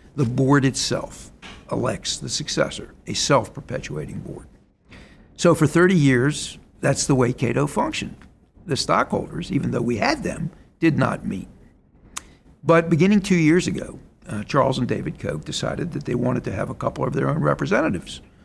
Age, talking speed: 60-79, 165 wpm